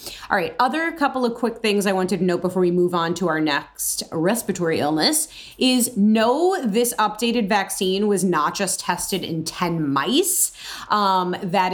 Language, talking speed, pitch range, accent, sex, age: English, 175 wpm, 185-250 Hz, American, female, 30-49